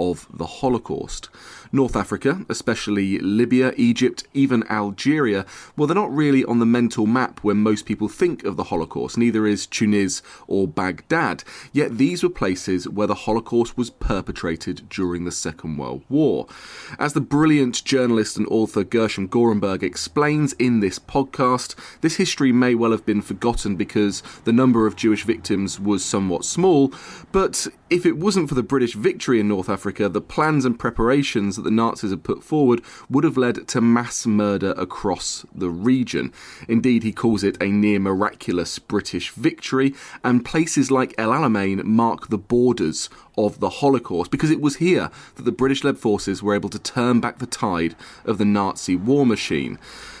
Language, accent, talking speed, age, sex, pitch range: English, British, 170 wpm, 30-49, male, 100-130 Hz